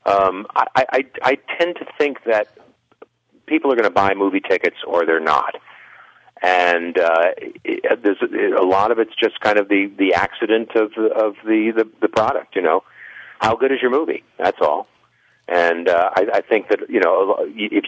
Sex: male